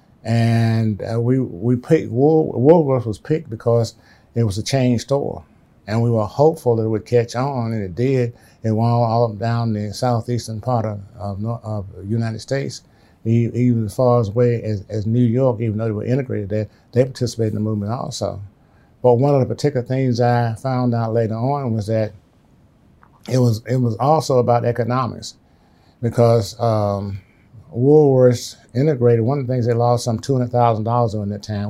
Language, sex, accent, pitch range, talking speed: English, male, American, 110-125 Hz, 180 wpm